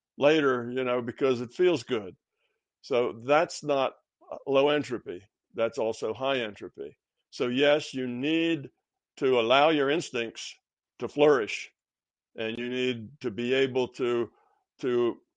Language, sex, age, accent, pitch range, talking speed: English, male, 60-79, American, 120-145 Hz, 135 wpm